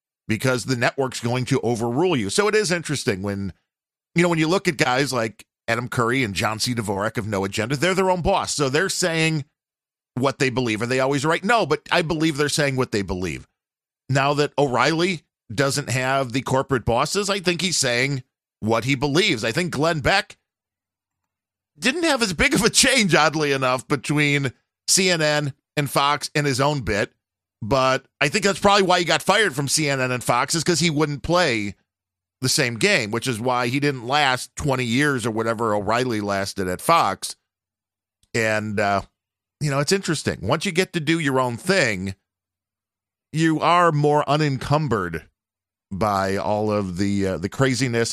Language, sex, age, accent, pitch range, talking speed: English, male, 40-59, American, 110-150 Hz, 185 wpm